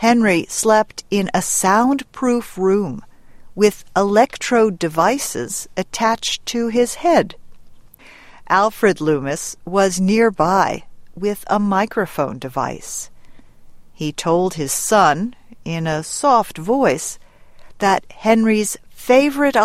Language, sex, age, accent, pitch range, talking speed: English, female, 50-69, American, 175-230 Hz, 100 wpm